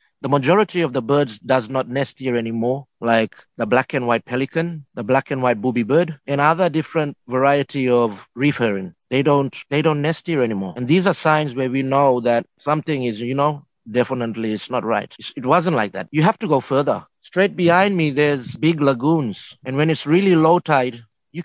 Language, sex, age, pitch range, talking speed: English, male, 50-69, 130-165 Hz, 205 wpm